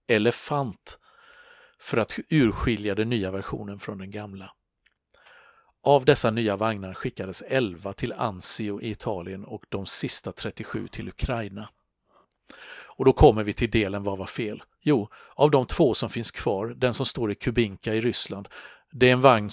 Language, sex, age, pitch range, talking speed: Swedish, male, 50-69, 100-120 Hz, 165 wpm